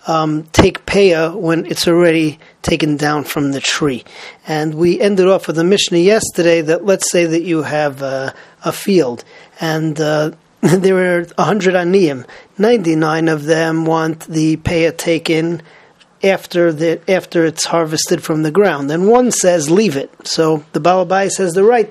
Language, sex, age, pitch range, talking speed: English, male, 40-59, 160-190 Hz, 165 wpm